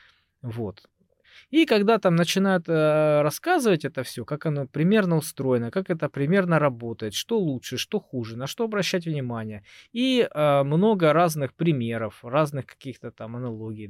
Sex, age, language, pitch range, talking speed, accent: male, 20-39, Russian, 120-165 Hz, 145 wpm, native